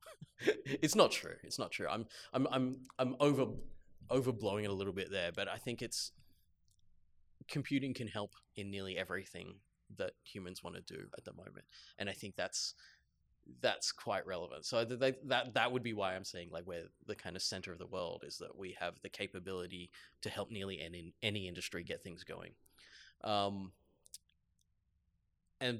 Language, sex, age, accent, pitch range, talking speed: English, male, 20-39, Australian, 90-125 Hz, 180 wpm